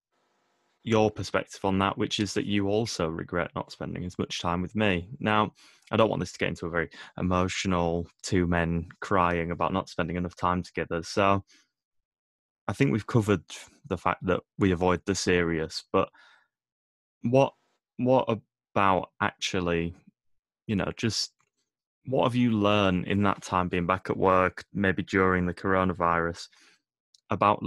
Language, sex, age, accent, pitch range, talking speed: English, male, 20-39, British, 85-100 Hz, 160 wpm